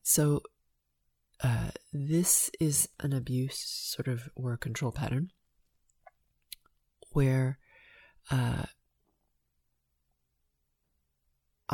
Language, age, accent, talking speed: English, 30-49, American, 70 wpm